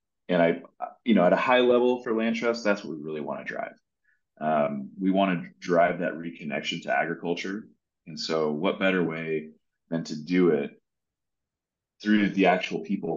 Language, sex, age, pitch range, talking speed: English, male, 30-49, 85-105 Hz, 180 wpm